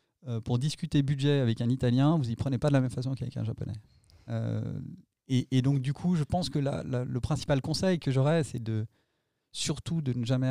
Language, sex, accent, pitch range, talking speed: French, male, French, 115-135 Hz, 230 wpm